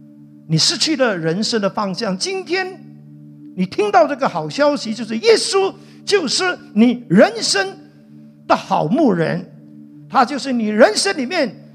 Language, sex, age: Chinese, male, 50-69